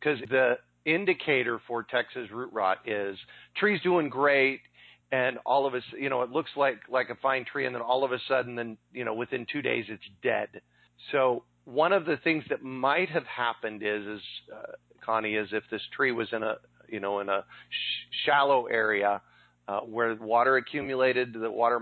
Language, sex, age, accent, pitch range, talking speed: English, male, 40-59, American, 105-130 Hz, 195 wpm